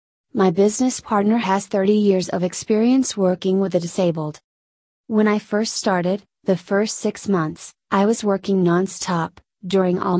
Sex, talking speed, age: female, 155 wpm, 30-49